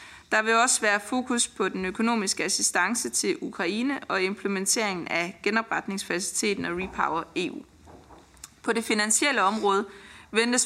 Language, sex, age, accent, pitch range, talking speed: Danish, female, 30-49, native, 185-225 Hz, 130 wpm